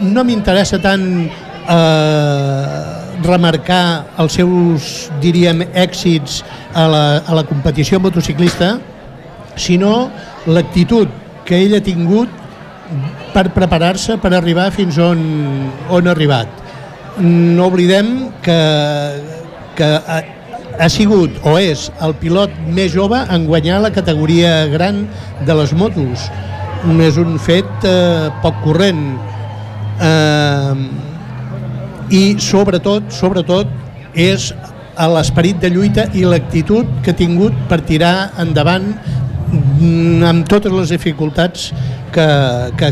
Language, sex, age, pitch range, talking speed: Portuguese, male, 60-79, 145-180 Hz, 110 wpm